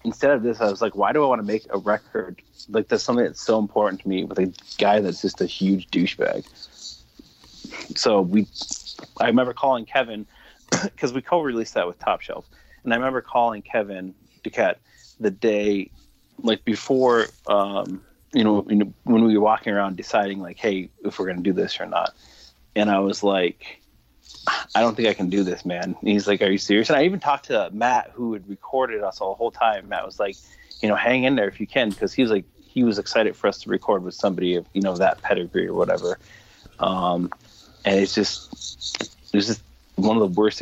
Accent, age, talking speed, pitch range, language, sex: American, 30-49, 215 wpm, 95-110 Hz, English, male